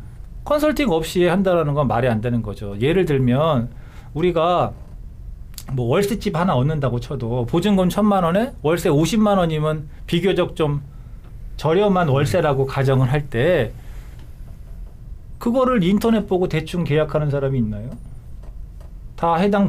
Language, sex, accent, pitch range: Korean, male, native, 125-195 Hz